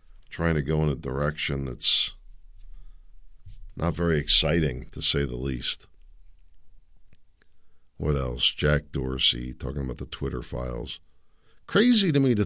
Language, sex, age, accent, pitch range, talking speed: English, male, 50-69, American, 70-85 Hz, 130 wpm